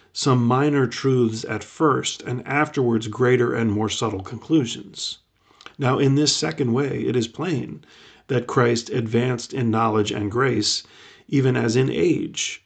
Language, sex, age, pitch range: English, male, 40-59, 110-130 Hz